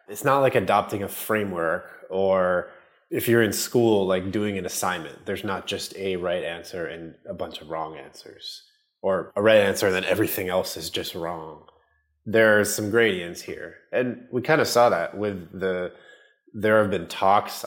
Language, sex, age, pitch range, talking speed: English, male, 20-39, 90-115 Hz, 185 wpm